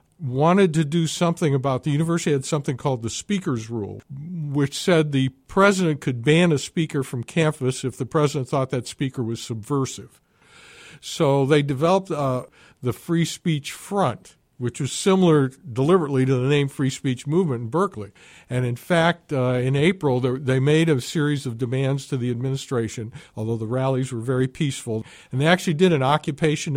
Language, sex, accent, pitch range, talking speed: English, male, American, 130-165 Hz, 175 wpm